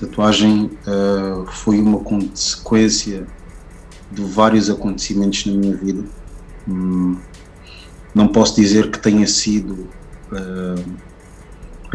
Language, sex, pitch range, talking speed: Portuguese, male, 95-105 Hz, 95 wpm